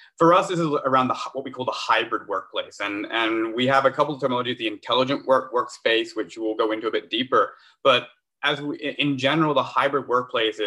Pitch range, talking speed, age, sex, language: 110-145 Hz, 220 wpm, 20-39, male, English